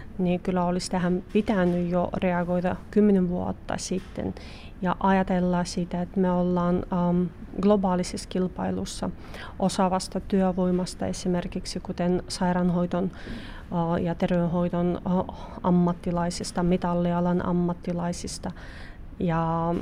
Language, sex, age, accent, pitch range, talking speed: Finnish, female, 30-49, native, 180-200 Hz, 90 wpm